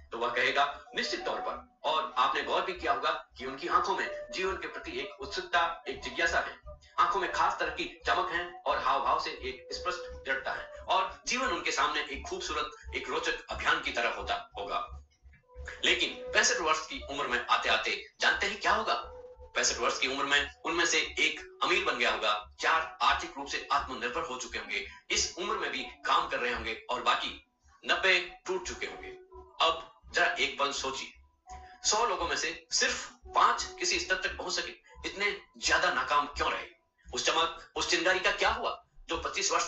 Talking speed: 155 wpm